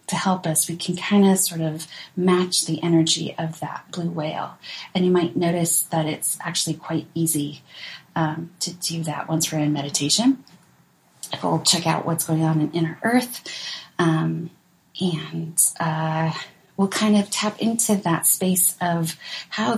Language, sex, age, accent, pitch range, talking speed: English, female, 30-49, American, 165-205 Hz, 165 wpm